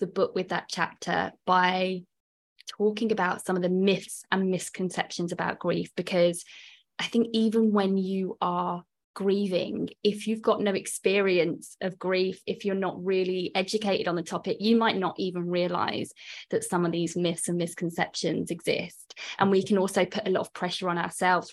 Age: 20-39